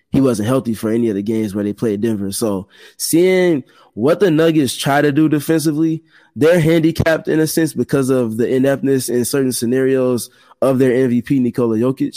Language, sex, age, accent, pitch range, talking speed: English, male, 20-39, American, 120-145 Hz, 185 wpm